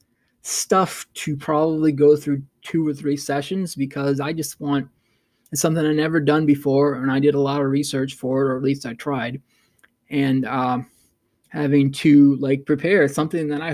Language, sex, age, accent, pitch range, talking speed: English, male, 20-39, American, 140-155 Hz, 180 wpm